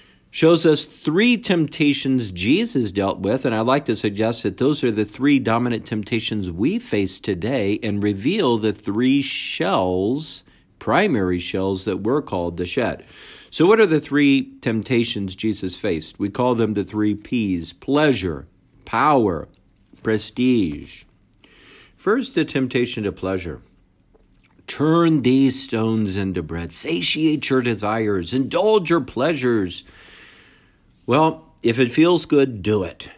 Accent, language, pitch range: American, English, 105-135 Hz